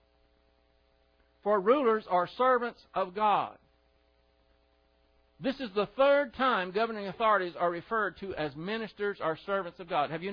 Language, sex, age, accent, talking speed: English, male, 60-79, American, 140 wpm